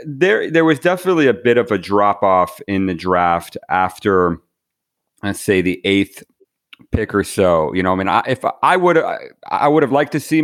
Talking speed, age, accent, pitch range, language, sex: 215 wpm, 40-59, American, 100-135 Hz, English, male